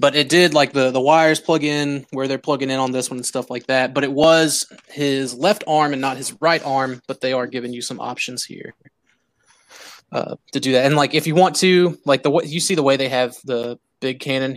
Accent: American